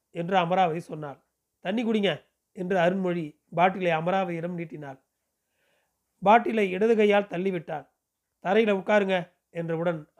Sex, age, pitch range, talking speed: male, 40-59, 165-200 Hz, 100 wpm